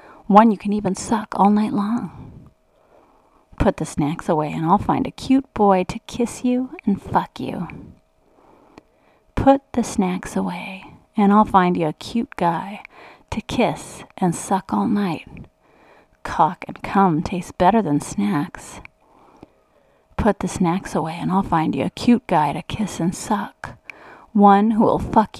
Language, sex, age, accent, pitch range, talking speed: English, female, 30-49, American, 180-230 Hz, 160 wpm